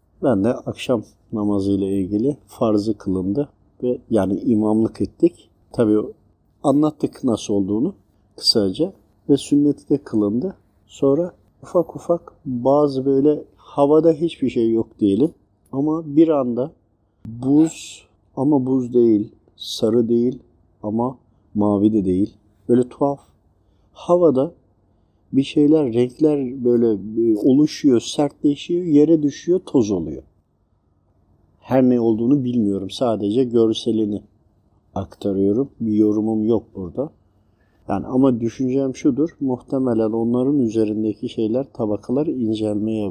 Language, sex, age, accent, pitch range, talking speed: Turkish, male, 50-69, native, 105-135 Hz, 105 wpm